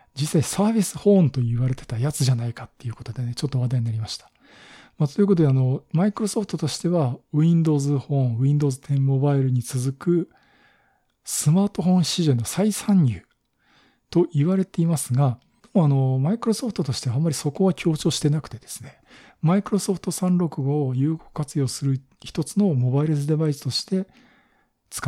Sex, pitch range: male, 125-170 Hz